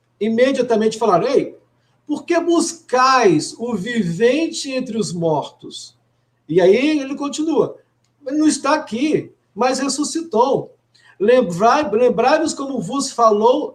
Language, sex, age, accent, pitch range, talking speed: Portuguese, male, 50-69, Brazilian, 205-280 Hz, 115 wpm